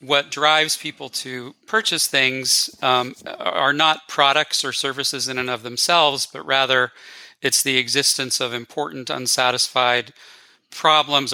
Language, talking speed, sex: English, 130 wpm, male